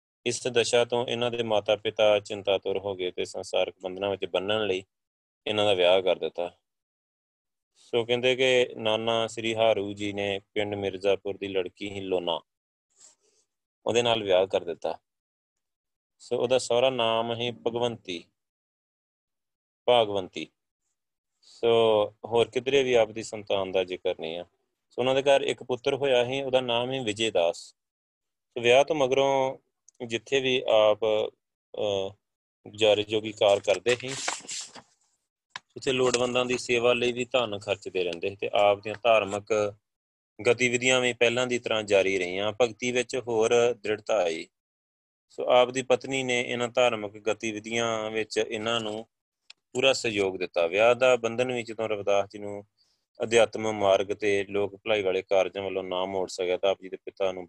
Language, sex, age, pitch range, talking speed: Punjabi, male, 30-49, 95-120 Hz, 155 wpm